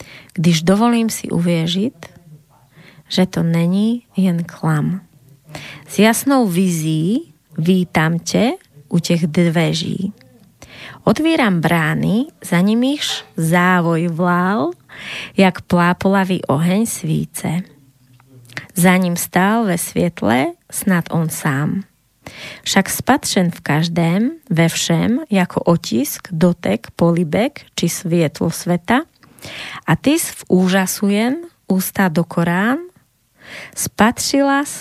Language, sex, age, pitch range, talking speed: Slovak, female, 20-39, 165-210 Hz, 100 wpm